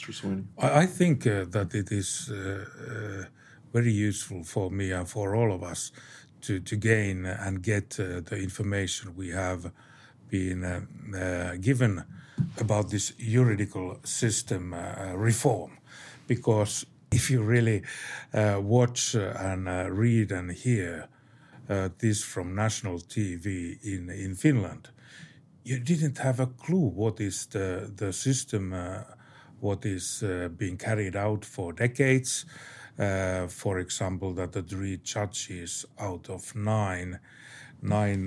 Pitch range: 95-125 Hz